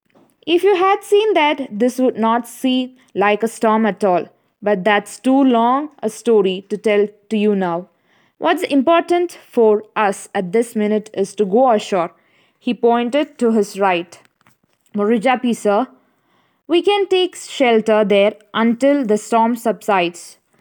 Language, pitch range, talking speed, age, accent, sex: Malayalam, 205-280 Hz, 150 wpm, 20-39, native, female